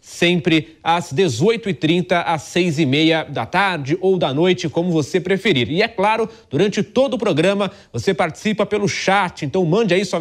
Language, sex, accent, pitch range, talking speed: English, male, Brazilian, 160-200 Hz, 165 wpm